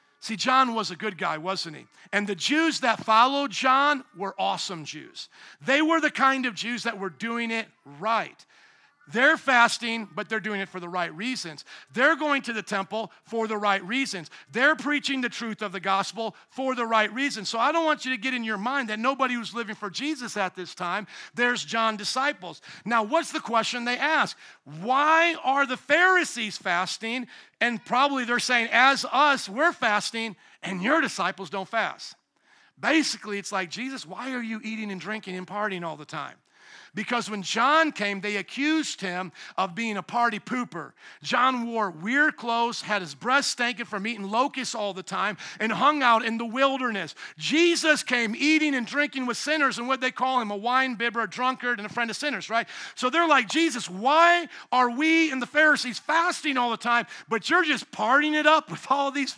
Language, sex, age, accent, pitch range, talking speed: English, male, 50-69, American, 210-270 Hz, 200 wpm